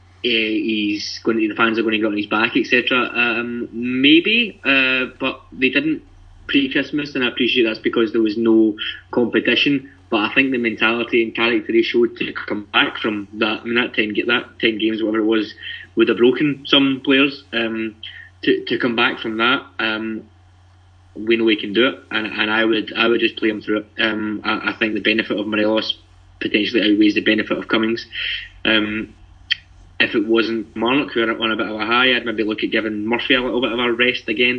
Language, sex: English, male